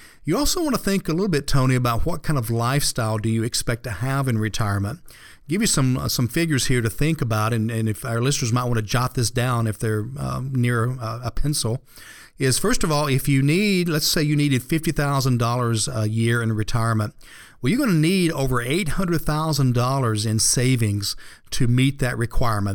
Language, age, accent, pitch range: English, 50-69, American, 115-145 Hz